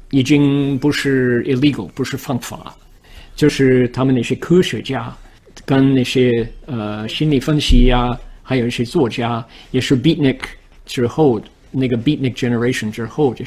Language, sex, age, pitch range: Chinese, male, 50-69, 120-145 Hz